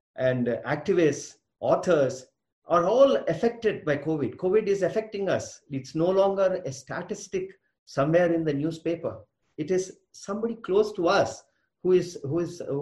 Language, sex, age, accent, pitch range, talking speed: English, male, 50-69, Indian, 130-190 Hz, 140 wpm